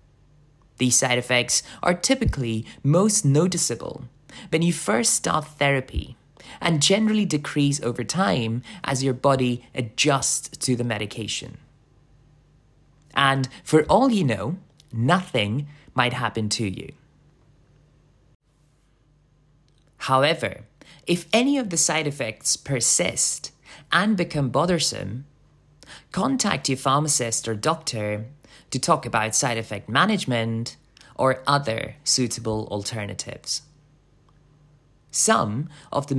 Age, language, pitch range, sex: 20-39, English, 125-150 Hz, male